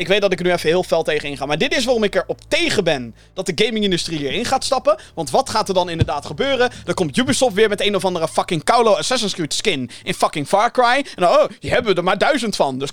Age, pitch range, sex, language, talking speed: 20-39, 165-245 Hz, male, Dutch, 285 wpm